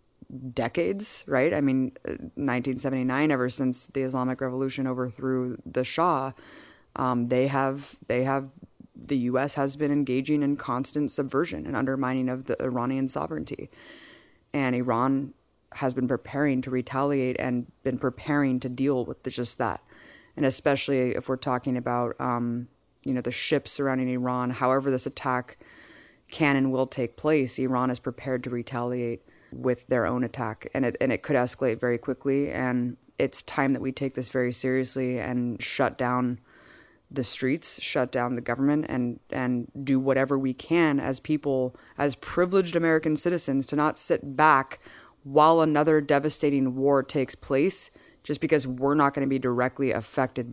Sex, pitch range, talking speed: female, 125-140 Hz, 160 wpm